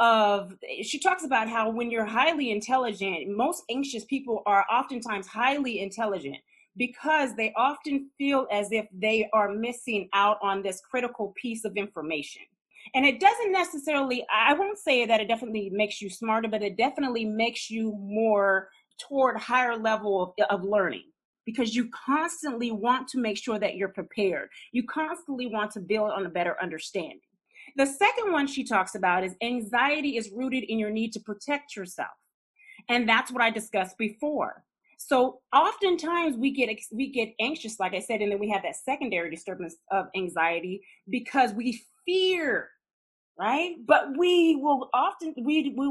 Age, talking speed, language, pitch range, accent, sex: 30-49, 165 wpm, English, 210-280 Hz, American, female